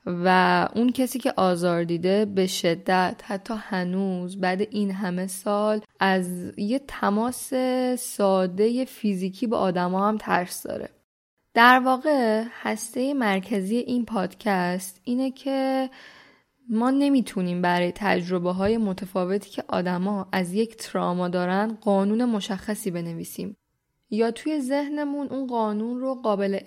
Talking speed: 120 wpm